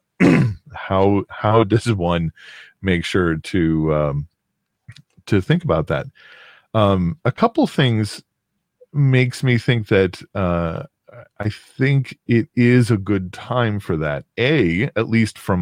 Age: 40-59